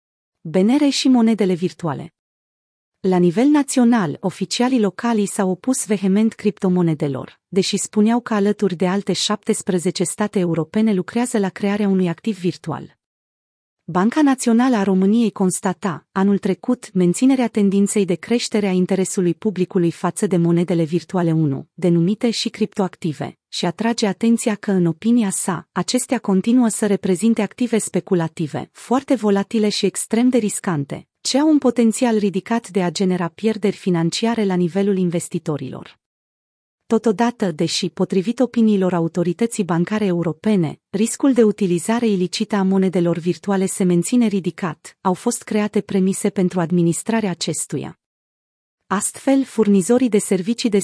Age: 30-49